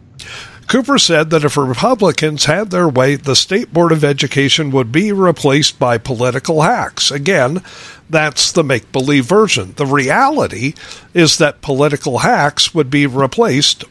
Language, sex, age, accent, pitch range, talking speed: English, male, 50-69, American, 135-190 Hz, 140 wpm